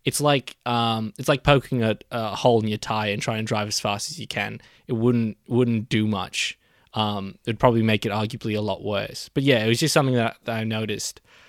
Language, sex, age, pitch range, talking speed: English, male, 20-39, 120-165 Hz, 240 wpm